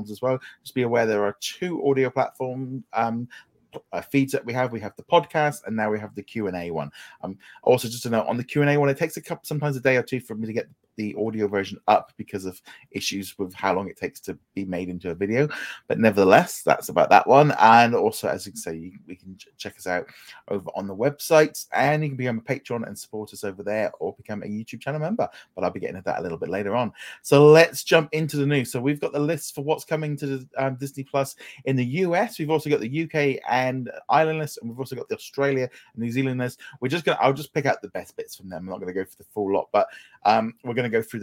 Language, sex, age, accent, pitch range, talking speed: English, male, 30-49, British, 115-165 Hz, 265 wpm